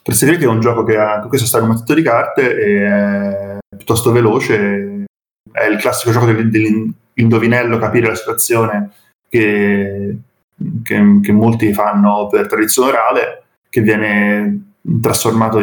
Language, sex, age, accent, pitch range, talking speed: Italian, male, 20-39, native, 105-125 Hz, 135 wpm